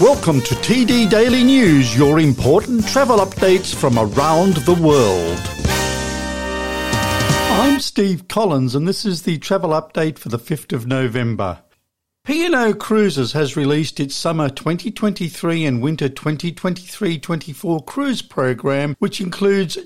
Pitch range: 130-185 Hz